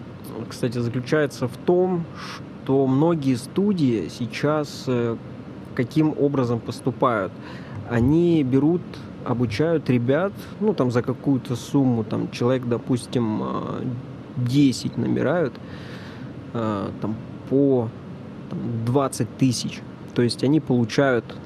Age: 20-39